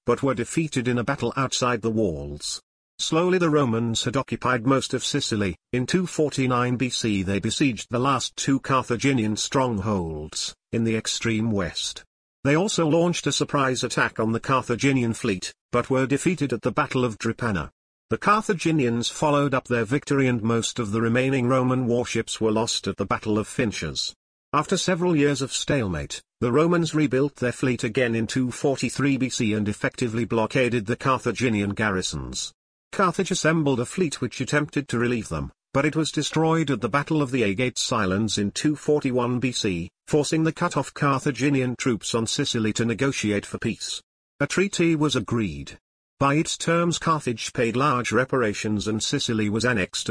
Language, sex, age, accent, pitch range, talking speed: English, male, 50-69, British, 110-145 Hz, 165 wpm